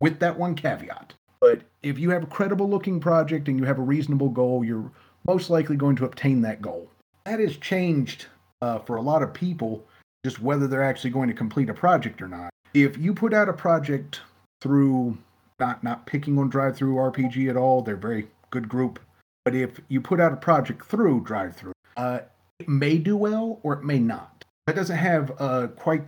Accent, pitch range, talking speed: American, 120-155 Hz, 205 wpm